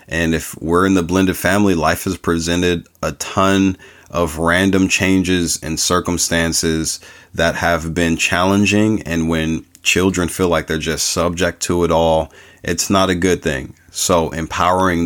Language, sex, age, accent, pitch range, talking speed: English, male, 40-59, American, 80-95 Hz, 155 wpm